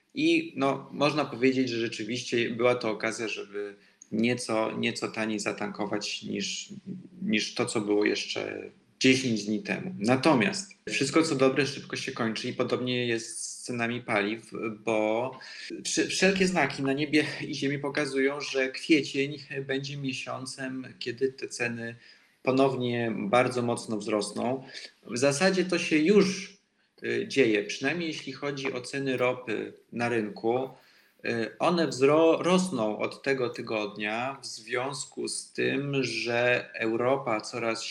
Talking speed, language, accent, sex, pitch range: 125 wpm, Polish, native, male, 115-140 Hz